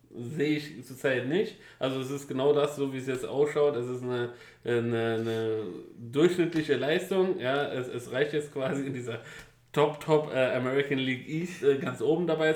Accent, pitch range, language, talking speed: German, 120-150 Hz, German, 180 wpm